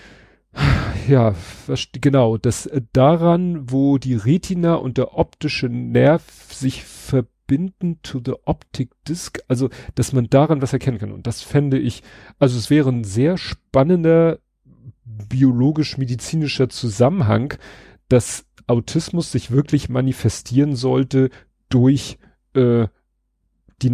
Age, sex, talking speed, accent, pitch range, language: 40-59, male, 115 wpm, German, 115-135 Hz, German